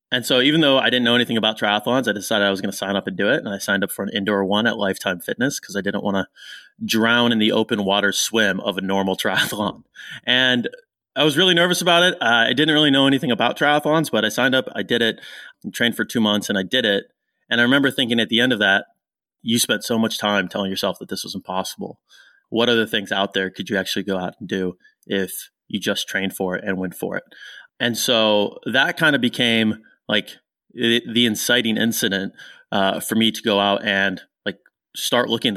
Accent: American